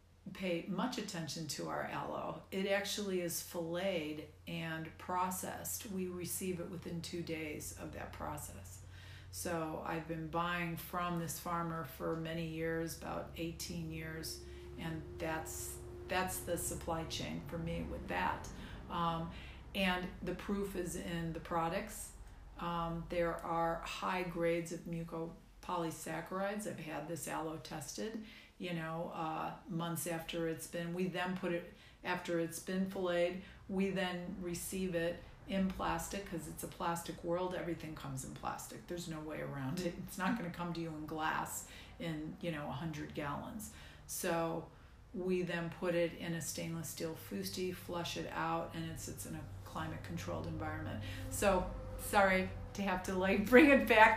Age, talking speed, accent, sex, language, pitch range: 50-69, 160 wpm, American, female, English, 160-180 Hz